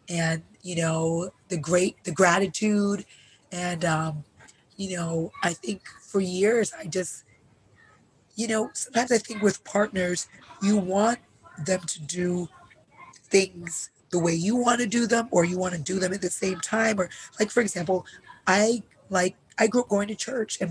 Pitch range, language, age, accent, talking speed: 160-195 Hz, English, 30-49, American, 170 wpm